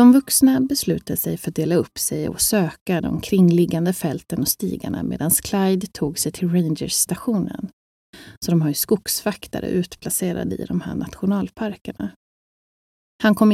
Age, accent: 30-49, native